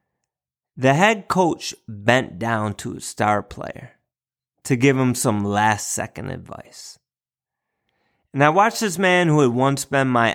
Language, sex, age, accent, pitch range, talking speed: English, male, 30-49, American, 110-140 Hz, 145 wpm